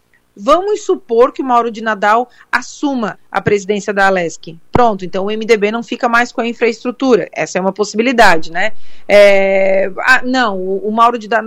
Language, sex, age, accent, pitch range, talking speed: Portuguese, female, 40-59, Brazilian, 200-245 Hz, 175 wpm